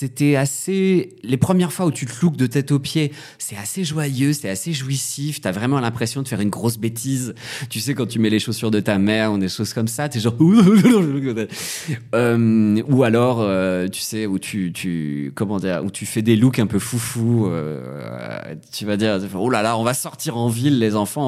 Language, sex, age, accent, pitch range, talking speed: French, male, 30-49, French, 110-150 Hz, 225 wpm